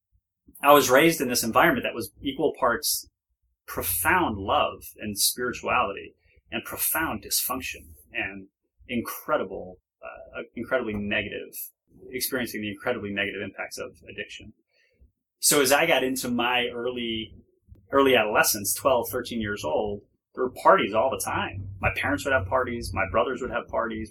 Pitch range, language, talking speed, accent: 95-120 Hz, English, 145 wpm, American